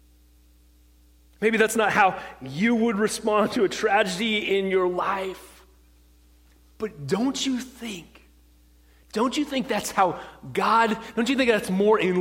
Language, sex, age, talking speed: English, male, 30-49, 145 wpm